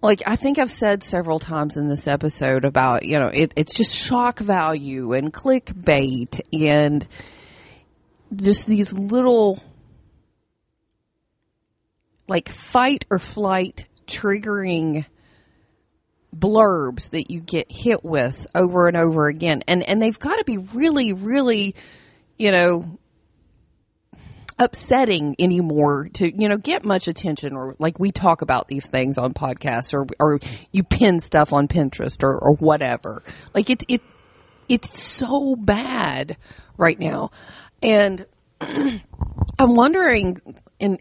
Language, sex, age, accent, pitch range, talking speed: English, female, 40-59, American, 145-220 Hz, 125 wpm